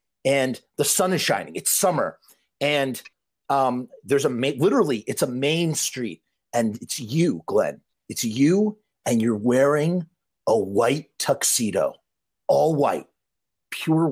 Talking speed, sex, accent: 135 wpm, male, American